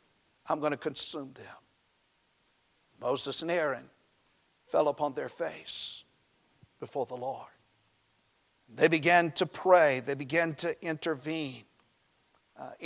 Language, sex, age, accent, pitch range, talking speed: English, male, 50-69, American, 135-170 Hz, 110 wpm